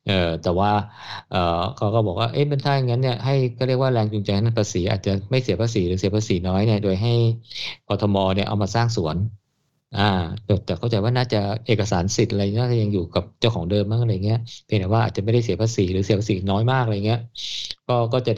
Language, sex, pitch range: Thai, male, 100-125 Hz